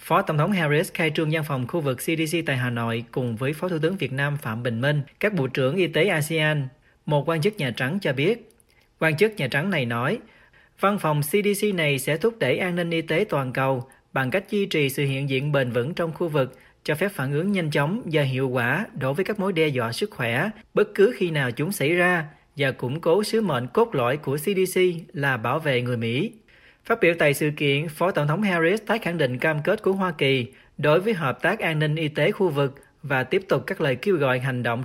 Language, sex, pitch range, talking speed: Vietnamese, male, 135-185 Hz, 245 wpm